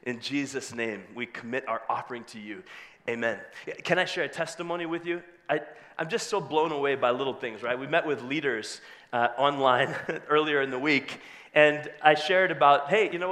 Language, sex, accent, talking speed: English, male, American, 195 wpm